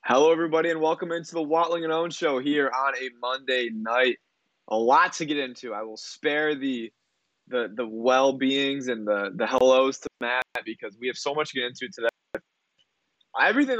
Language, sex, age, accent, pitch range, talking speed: English, male, 20-39, American, 120-150 Hz, 185 wpm